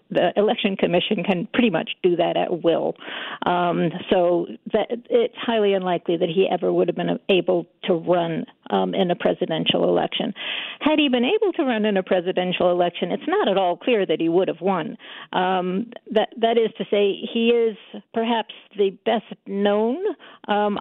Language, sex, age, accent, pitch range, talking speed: English, female, 50-69, American, 180-235 Hz, 180 wpm